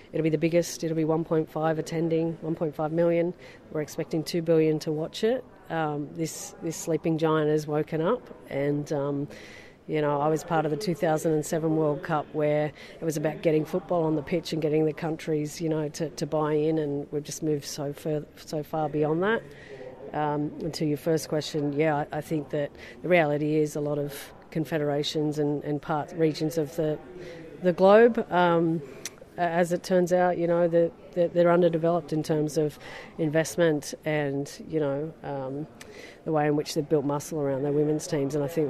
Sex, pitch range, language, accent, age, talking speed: female, 150-165 Hz, English, Australian, 40-59, 190 wpm